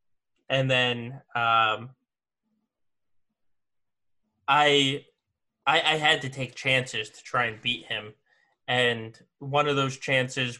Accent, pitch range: American, 120-135 Hz